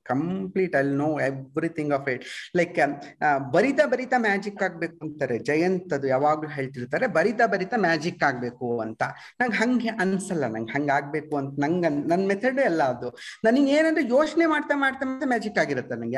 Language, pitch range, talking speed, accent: Kannada, 165-275 Hz, 160 wpm, native